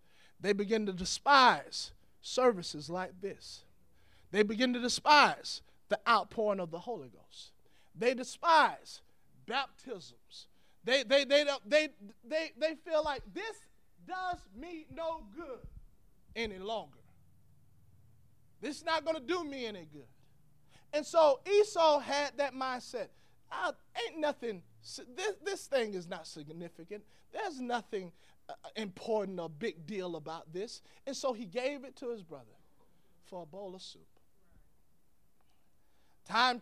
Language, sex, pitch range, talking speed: English, male, 185-280 Hz, 135 wpm